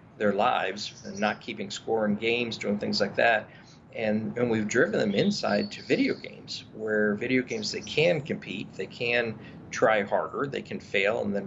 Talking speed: 190 wpm